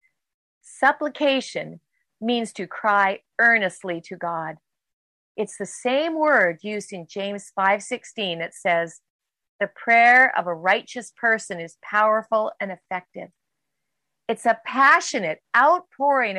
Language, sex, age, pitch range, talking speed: English, female, 40-59, 190-280 Hz, 115 wpm